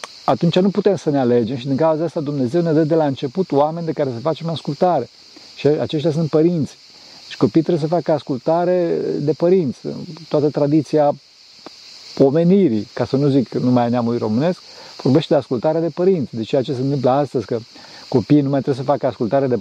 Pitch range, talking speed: 130-170 Hz, 200 wpm